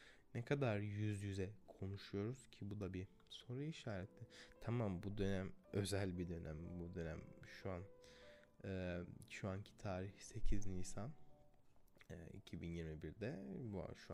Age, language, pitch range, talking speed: 20-39, Turkish, 90-115 Hz, 130 wpm